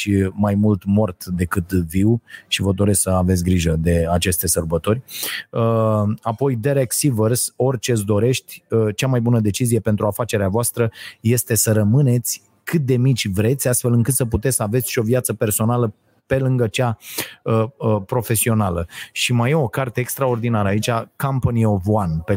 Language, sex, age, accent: Romanian, male, 30-49, native